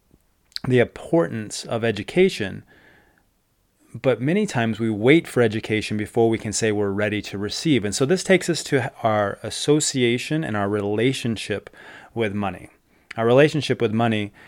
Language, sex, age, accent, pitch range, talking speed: English, male, 30-49, American, 100-120 Hz, 150 wpm